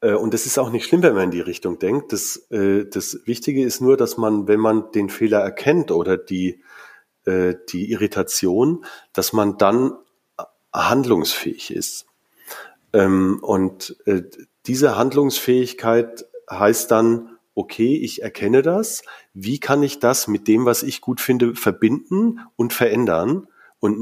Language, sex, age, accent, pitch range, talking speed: German, male, 40-59, German, 105-135 Hz, 140 wpm